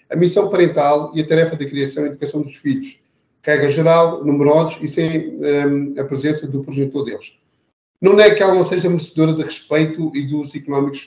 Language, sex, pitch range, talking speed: Portuguese, male, 140-170 Hz, 185 wpm